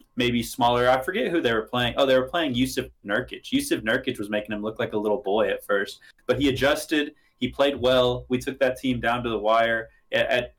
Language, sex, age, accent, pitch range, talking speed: English, male, 20-39, American, 105-125 Hz, 230 wpm